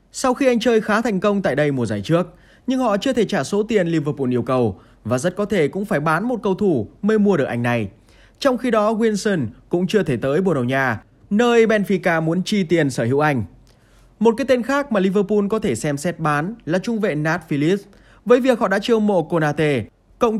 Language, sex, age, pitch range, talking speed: Vietnamese, male, 20-39, 140-215 Hz, 230 wpm